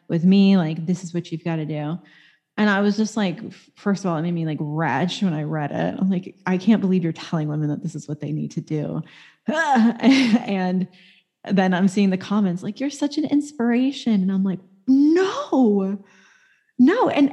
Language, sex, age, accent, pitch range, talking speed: English, female, 20-39, American, 185-250 Hz, 210 wpm